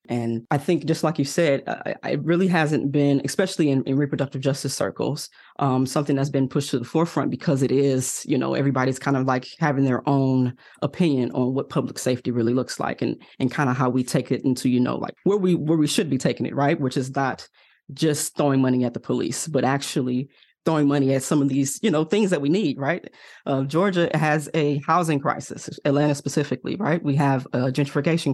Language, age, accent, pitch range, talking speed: English, 20-39, American, 130-155 Hz, 220 wpm